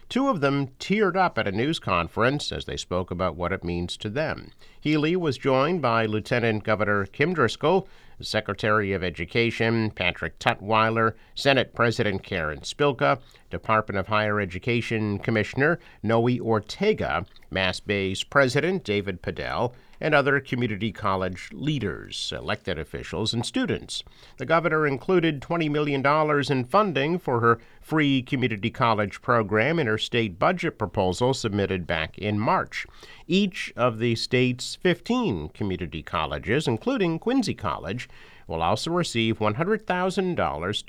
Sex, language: male, English